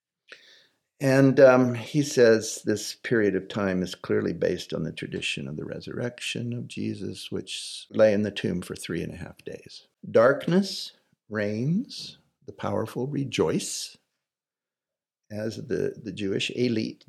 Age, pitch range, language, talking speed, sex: 60-79, 110-150 Hz, English, 140 wpm, male